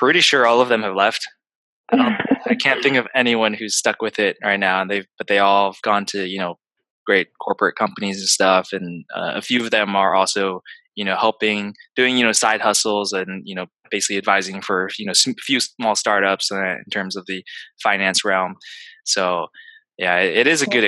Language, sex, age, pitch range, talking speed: English, male, 20-39, 100-130 Hz, 215 wpm